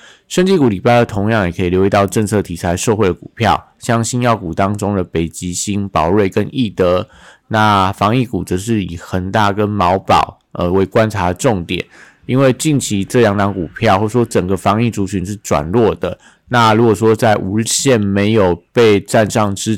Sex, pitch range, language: male, 95-115 Hz, Chinese